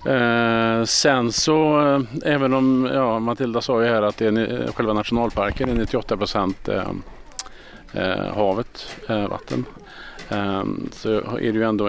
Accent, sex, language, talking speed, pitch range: Norwegian, male, Swedish, 145 wpm, 105-125 Hz